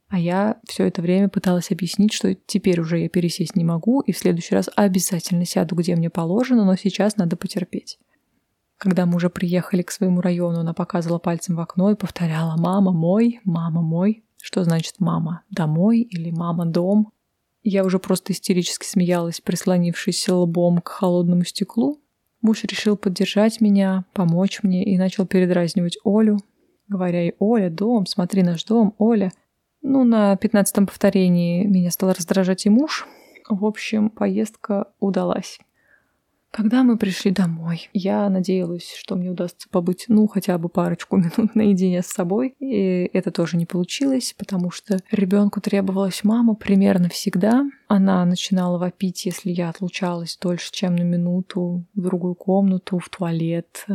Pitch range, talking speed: 175-205 Hz, 150 wpm